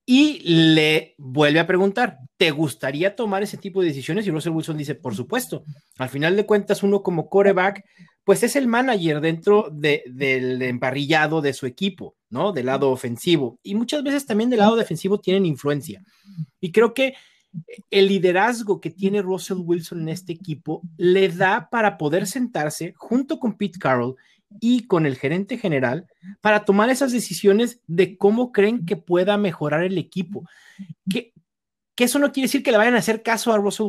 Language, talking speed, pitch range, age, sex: Spanish, 180 wpm, 160-210 Hz, 30-49, male